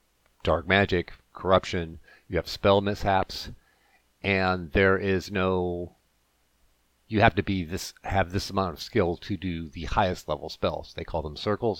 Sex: male